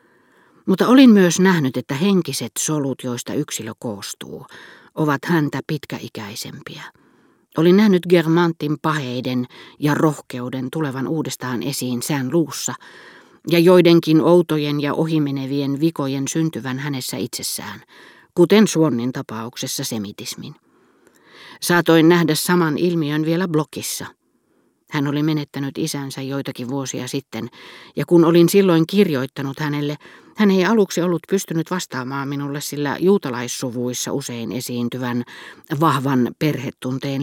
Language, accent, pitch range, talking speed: Finnish, native, 130-165 Hz, 110 wpm